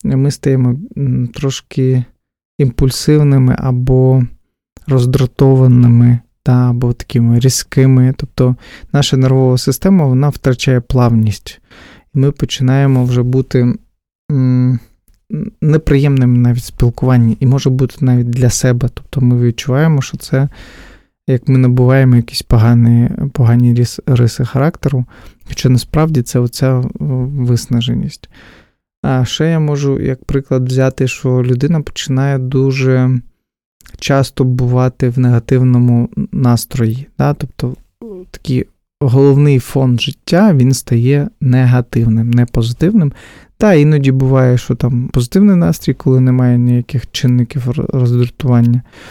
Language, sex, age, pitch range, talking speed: Ukrainian, male, 20-39, 120-135 Hz, 110 wpm